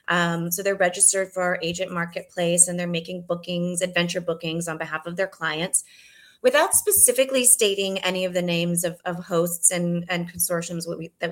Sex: female